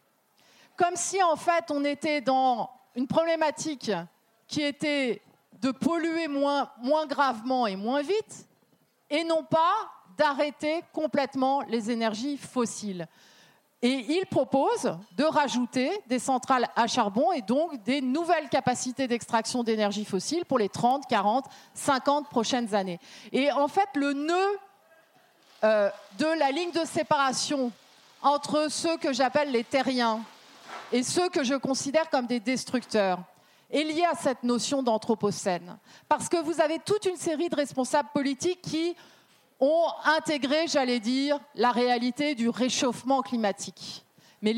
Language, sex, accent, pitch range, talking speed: French, female, French, 240-315 Hz, 140 wpm